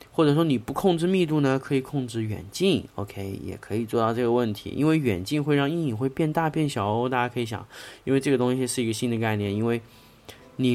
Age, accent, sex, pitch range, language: 20-39, native, male, 105-135 Hz, Chinese